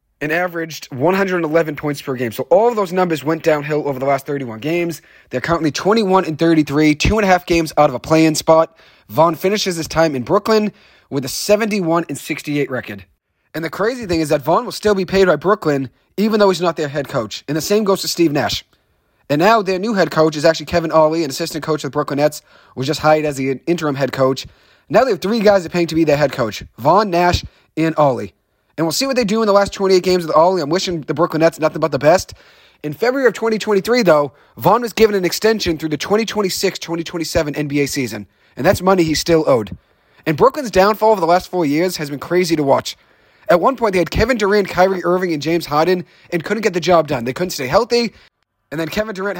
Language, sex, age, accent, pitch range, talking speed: English, male, 30-49, American, 150-190 Hz, 240 wpm